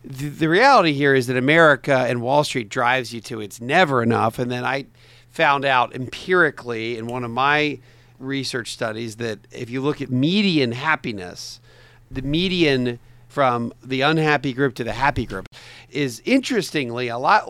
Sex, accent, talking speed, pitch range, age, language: male, American, 165 wpm, 120-145 Hz, 50-69, English